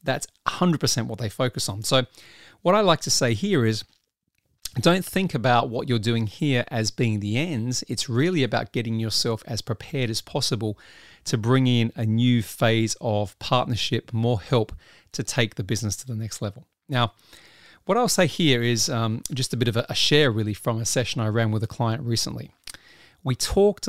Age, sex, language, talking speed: 40-59, male, English, 195 wpm